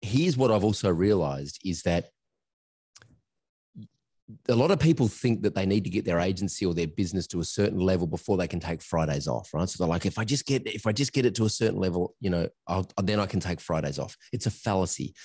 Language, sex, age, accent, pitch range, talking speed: English, male, 30-49, Australian, 85-110 Hz, 235 wpm